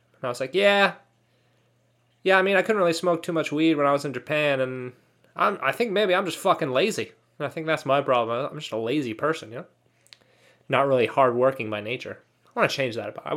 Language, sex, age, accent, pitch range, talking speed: English, male, 20-39, American, 130-180 Hz, 235 wpm